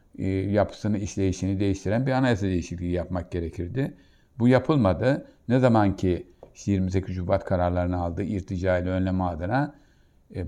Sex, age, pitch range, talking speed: male, 60-79, 90-110 Hz, 125 wpm